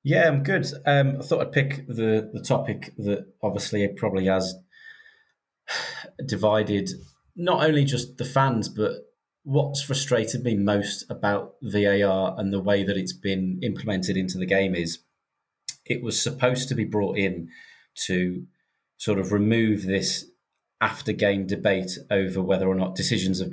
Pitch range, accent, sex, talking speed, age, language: 95-110 Hz, British, male, 155 wpm, 30-49, English